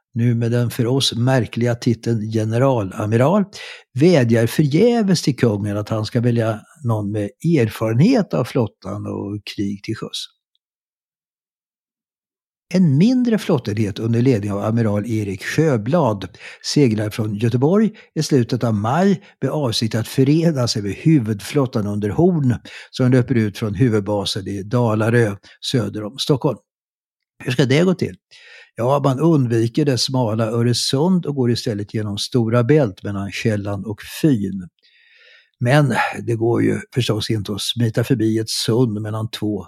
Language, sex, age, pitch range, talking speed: Swedish, male, 60-79, 105-140 Hz, 140 wpm